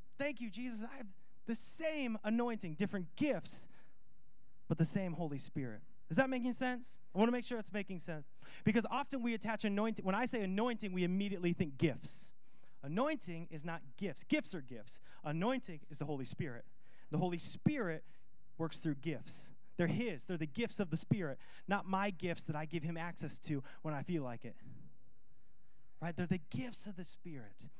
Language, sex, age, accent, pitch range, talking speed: English, male, 20-39, American, 155-200 Hz, 190 wpm